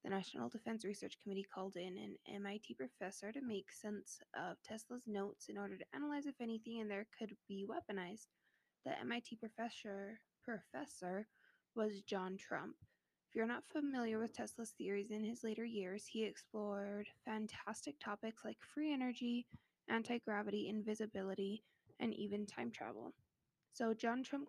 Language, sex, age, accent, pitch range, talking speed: English, female, 20-39, American, 205-235 Hz, 150 wpm